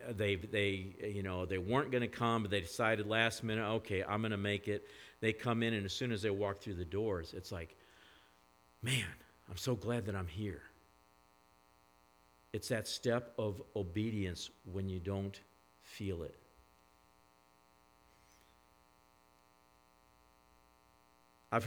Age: 50-69